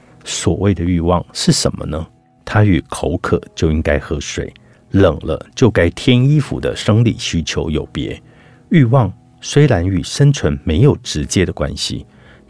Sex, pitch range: male, 85-125 Hz